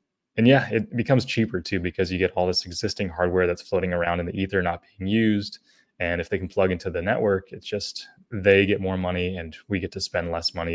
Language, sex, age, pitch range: English, male, 20-39, 85-100 Hz